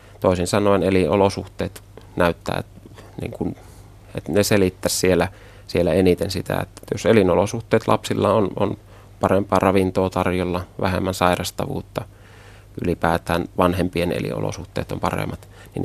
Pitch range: 90-100 Hz